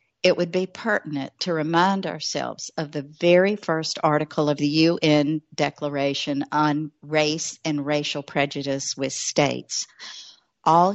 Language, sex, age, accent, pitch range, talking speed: English, female, 50-69, American, 145-175 Hz, 130 wpm